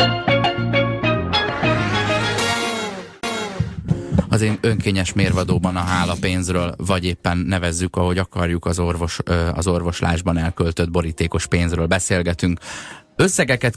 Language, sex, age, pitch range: Hungarian, male, 20-39, 85-105 Hz